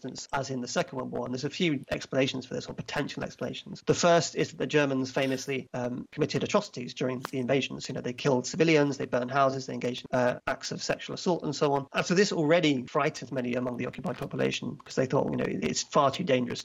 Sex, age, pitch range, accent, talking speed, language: male, 40-59, 130-150 Hz, British, 240 wpm, English